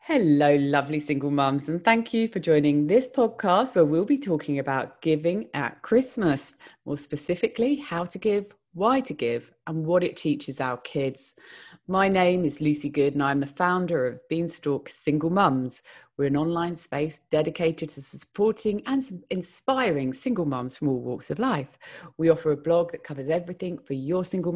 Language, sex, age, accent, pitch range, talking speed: English, female, 30-49, British, 140-185 Hz, 175 wpm